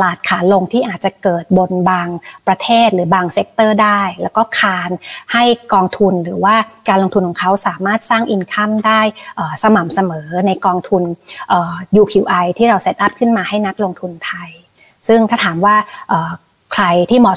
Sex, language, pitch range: female, Thai, 185-230 Hz